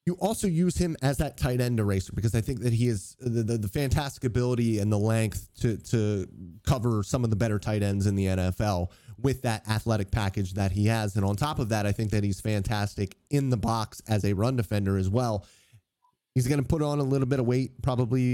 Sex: male